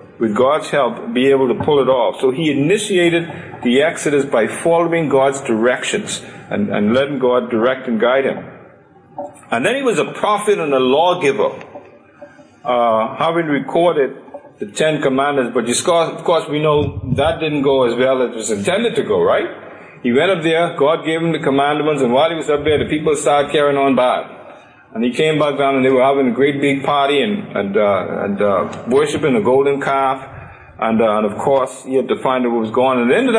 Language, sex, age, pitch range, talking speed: English, male, 50-69, 130-165 Hz, 210 wpm